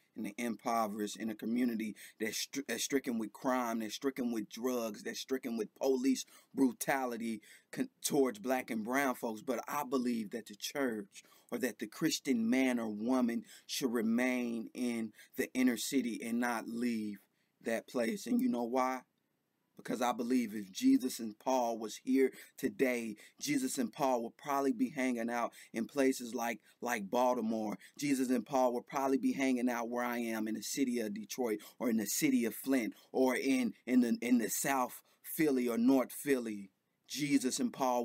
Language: English